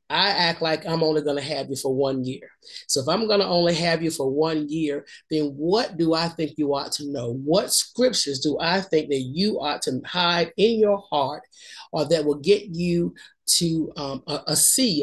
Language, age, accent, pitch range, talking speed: English, 40-59, American, 140-185 Hz, 220 wpm